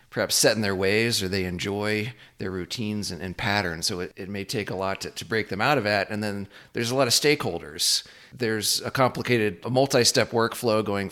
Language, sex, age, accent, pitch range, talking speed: English, male, 40-59, American, 95-120 Hz, 225 wpm